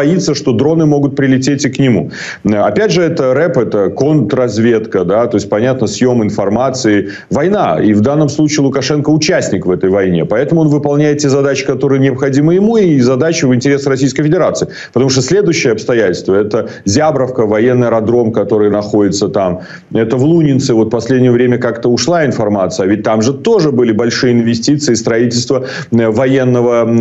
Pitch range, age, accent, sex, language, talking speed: 110-145 Hz, 40-59, native, male, Ukrainian, 170 wpm